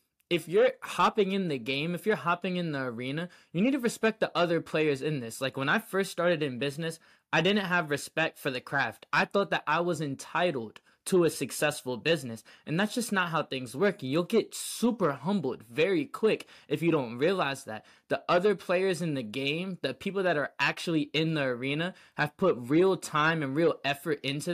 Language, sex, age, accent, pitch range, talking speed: English, male, 20-39, American, 140-180 Hz, 210 wpm